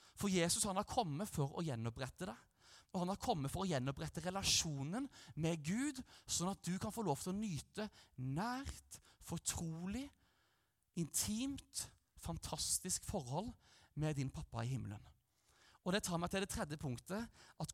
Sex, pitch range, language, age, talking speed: male, 150-210 Hz, English, 30-49, 155 wpm